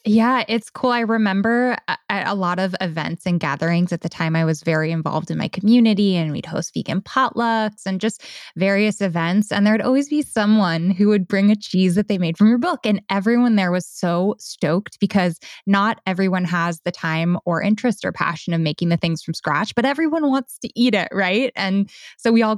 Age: 10-29